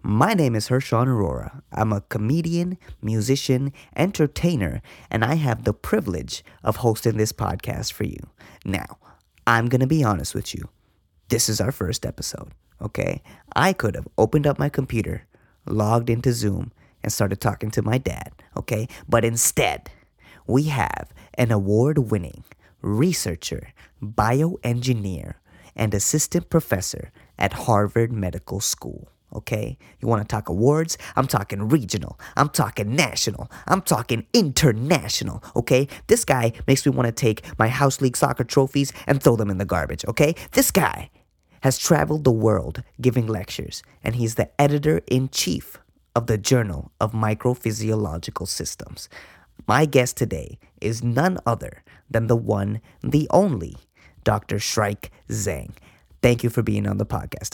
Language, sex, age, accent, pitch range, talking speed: English, male, 30-49, American, 105-135 Hz, 150 wpm